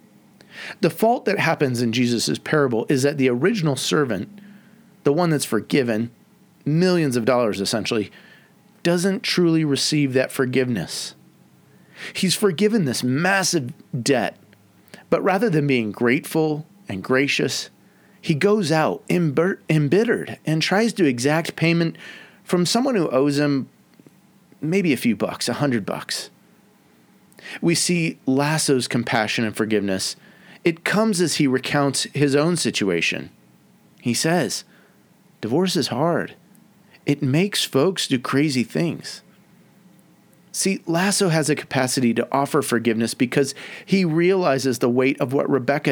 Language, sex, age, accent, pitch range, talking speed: English, male, 30-49, American, 130-185 Hz, 130 wpm